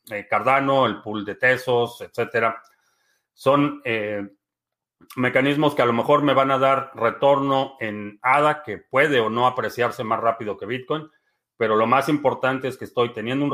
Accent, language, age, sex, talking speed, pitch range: Mexican, Spanish, 40-59, male, 170 wpm, 110-135 Hz